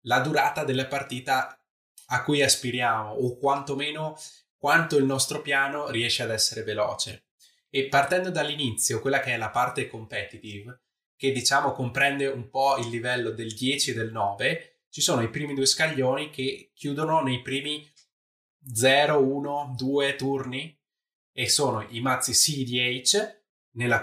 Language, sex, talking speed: Italian, male, 145 wpm